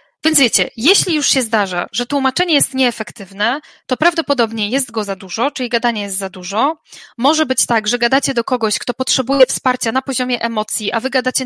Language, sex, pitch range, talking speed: Polish, female, 220-265 Hz, 195 wpm